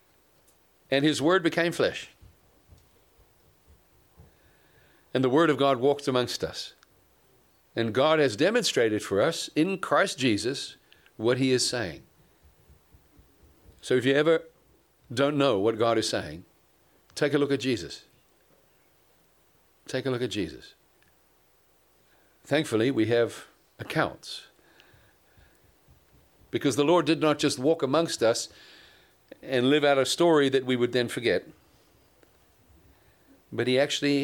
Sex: male